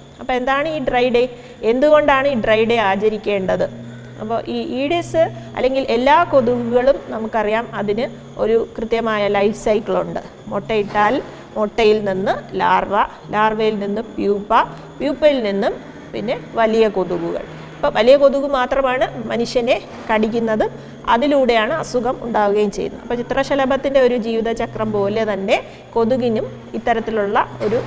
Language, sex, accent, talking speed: Malayalam, female, native, 110 wpm